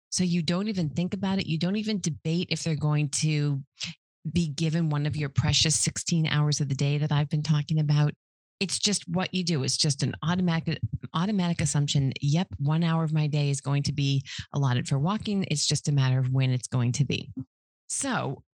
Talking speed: 215 wpm